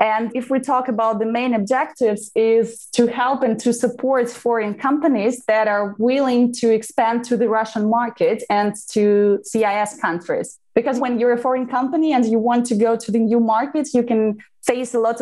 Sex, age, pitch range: female, 20-39, 220-260 Hz